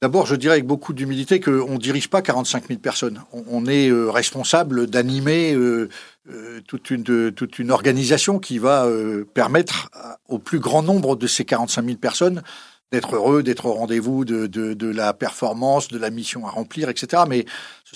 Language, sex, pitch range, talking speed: French, male, 115-160 Hz, 165 wpm